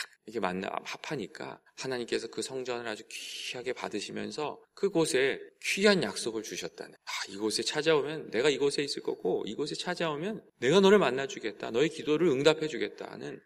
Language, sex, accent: Korean, male, native